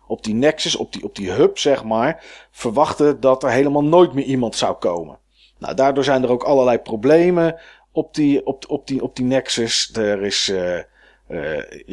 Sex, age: male, 40-59